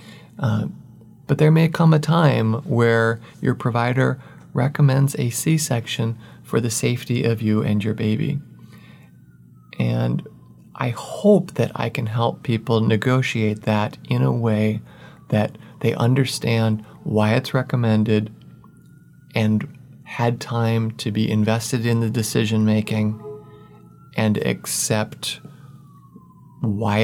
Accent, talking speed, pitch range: American, 120 wpm, 115-145 Hz